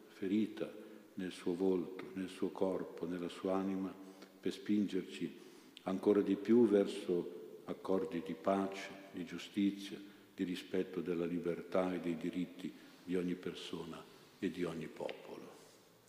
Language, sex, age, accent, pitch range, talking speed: Italian, male, 50-69, native, 90-110 Hz, 130 wpm